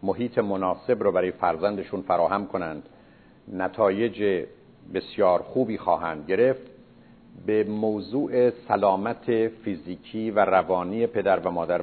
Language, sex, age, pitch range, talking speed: Persian, male, 50-69, 95-120 Hz, 105 wpm